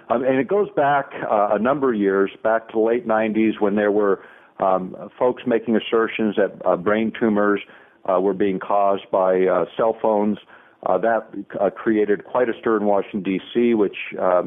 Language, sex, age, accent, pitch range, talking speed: English, male, 50-69, American, 100-120 Hz, 190 wpm